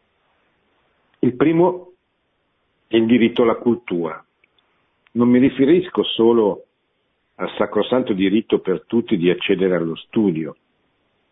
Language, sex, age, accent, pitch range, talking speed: Italian, male, 50-69, native, 95-115 Hz, 105 wpm